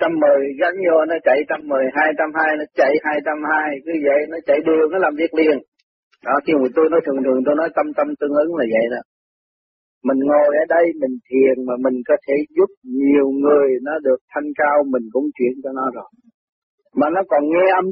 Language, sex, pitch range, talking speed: Vietnamese, male, 145-200 Hz, 230 wpm